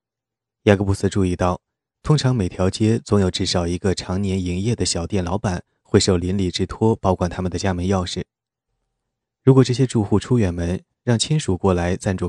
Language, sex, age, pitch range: Chinese, male, 20-39, 90-115 Hz